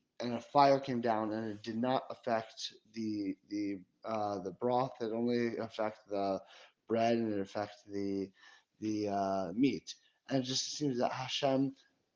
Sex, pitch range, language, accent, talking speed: male, 110-135 Hz, English, American, 165 wpm